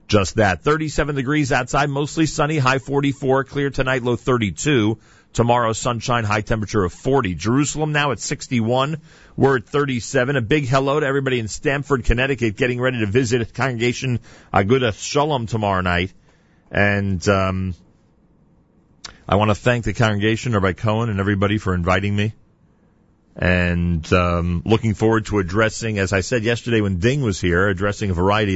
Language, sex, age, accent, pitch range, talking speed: English, male, 40-59, American, 100-140 Hz, 160 wpm